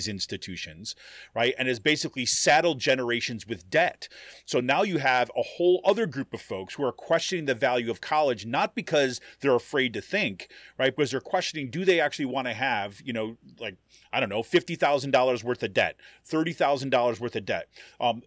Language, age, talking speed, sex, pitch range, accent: English, 30-49, 185 wpm, male, 120-160 Hz, American